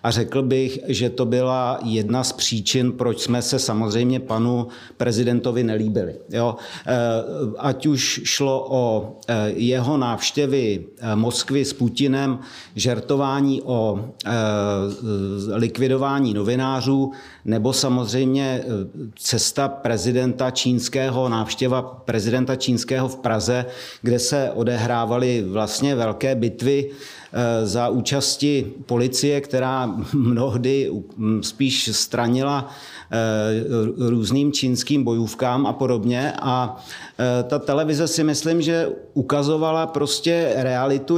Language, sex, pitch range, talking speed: Czech, male, 120-140 Hz, 95 wpm